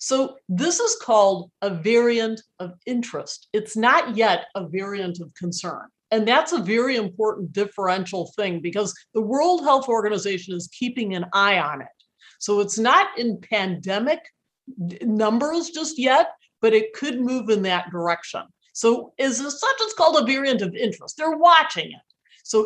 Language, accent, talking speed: English, American, 165 wpm